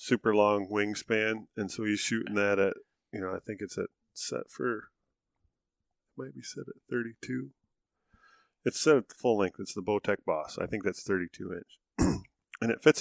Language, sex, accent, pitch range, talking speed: English, male, American, 95-110 Hz, 190 wpm